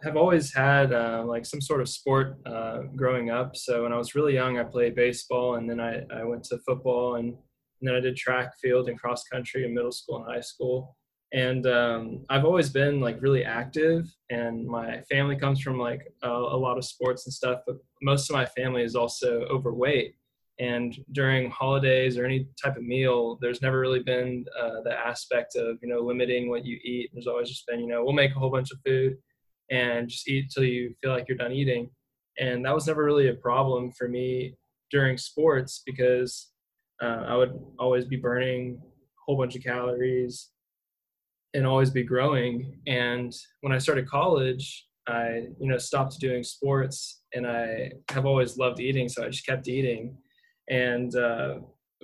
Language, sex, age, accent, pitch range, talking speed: English, male, 10-29, American, 120-135 Hz, 195 wpm